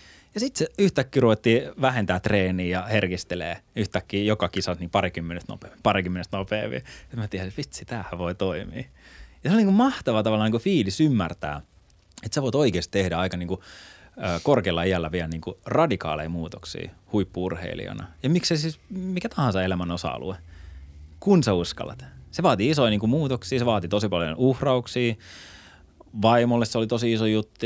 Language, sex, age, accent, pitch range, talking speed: Finnish, male, 20-39, native, 90-115 Hz, 165 wpm